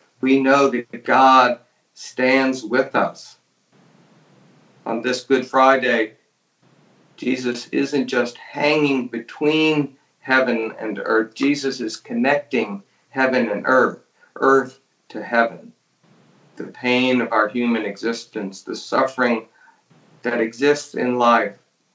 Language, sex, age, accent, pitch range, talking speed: English, male, 50-69, American, 115-135 Hz, 110 wpm